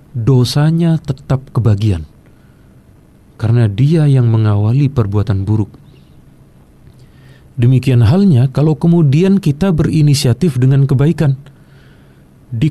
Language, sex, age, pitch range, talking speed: Indonesian, male, 40-59, 115-140 Hz, 85 wpm